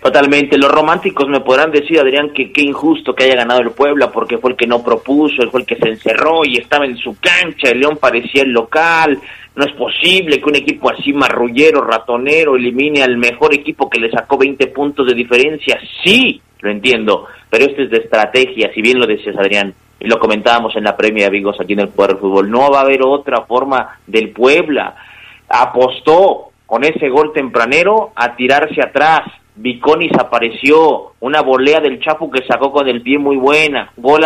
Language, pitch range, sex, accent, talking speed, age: Spanish, 125-155 Hz, male, Mexican, 200 wpm, 40-59